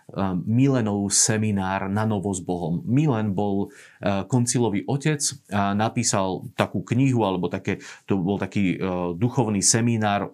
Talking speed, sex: 120 wpm, male